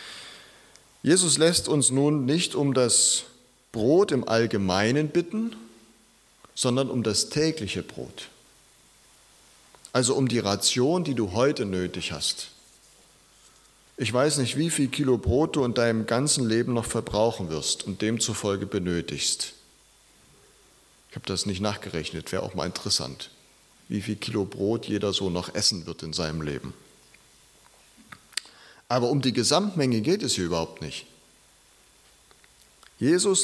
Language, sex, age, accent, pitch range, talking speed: German, male, 40-59, German, 95-135 Hz, 135 wpm